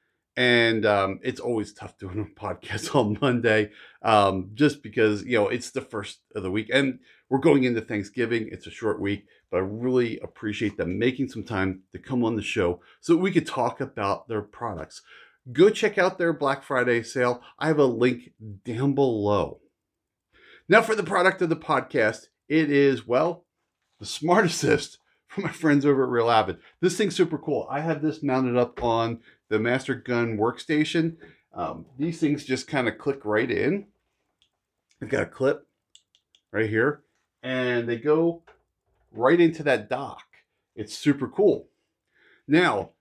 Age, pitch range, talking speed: 40-59, 110-150 Hz, 170 wpm